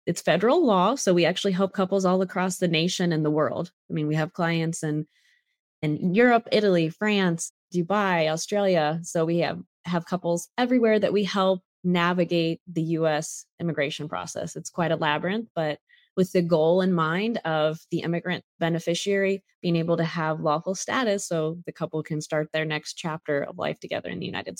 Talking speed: 185 wpm